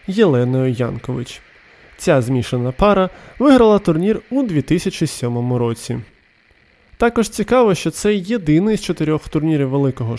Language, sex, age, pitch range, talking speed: Ukrainian, male, 20-39, 130-195 Hz, 110 wpm